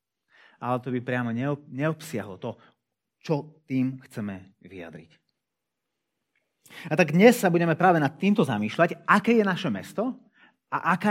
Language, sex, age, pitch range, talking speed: Slovak, male, 30-49, 115-175 Hz, 135 wpm